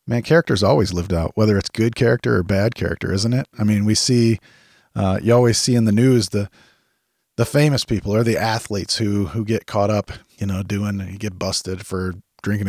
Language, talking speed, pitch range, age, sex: English, 215 wpm, 95-120 Hz, 40-59, male